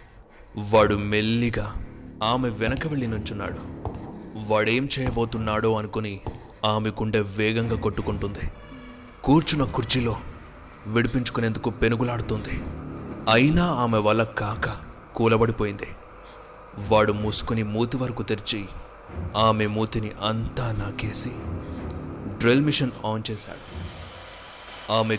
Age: 20-39